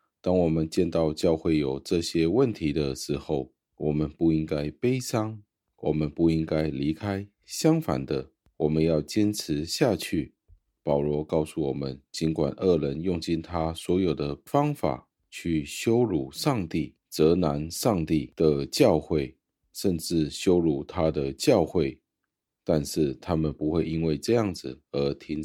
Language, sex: Chinese, male